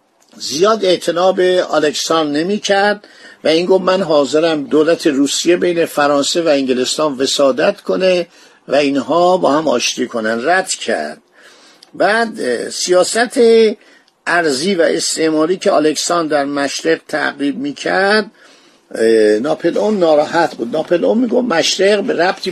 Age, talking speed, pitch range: 50-69, 125 wpm, 150-190 Hz